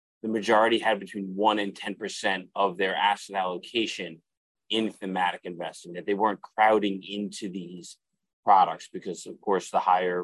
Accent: American